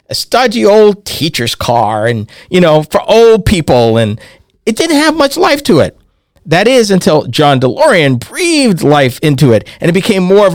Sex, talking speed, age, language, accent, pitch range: male, 190 wpm, 50-69, English, American, 150-215 Hz